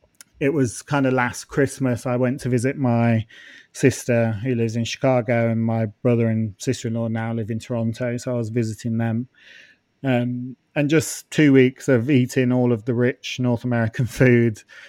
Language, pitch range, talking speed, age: English, 115-130 Hz, 175 wpm, 30-49